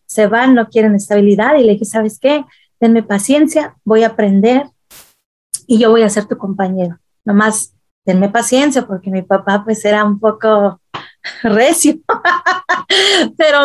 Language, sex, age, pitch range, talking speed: Spanish, female, 30-49, 205-245 Hz, 150 wpm